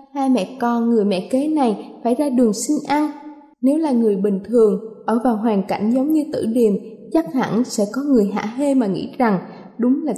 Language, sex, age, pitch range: Vietnamese, female, 20-39, 215-265 Hz